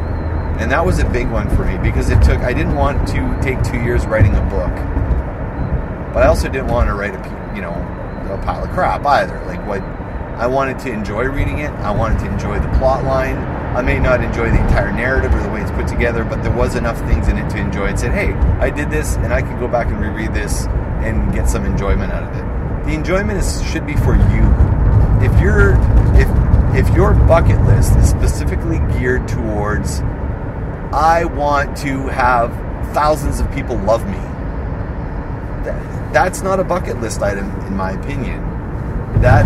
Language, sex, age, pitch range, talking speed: English, male, 30-49, 95-115 Hz, 200 wpm